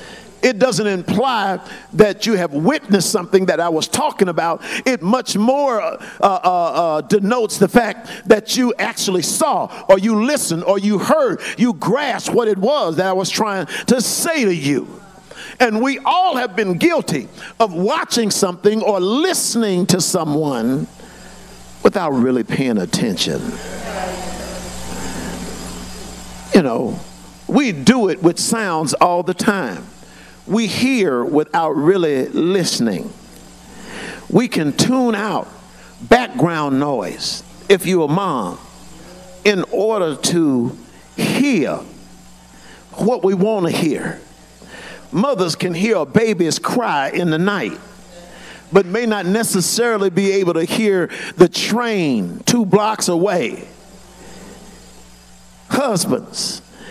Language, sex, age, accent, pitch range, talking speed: English, male, 50-69, American, 165-225 Hz, 125 wpm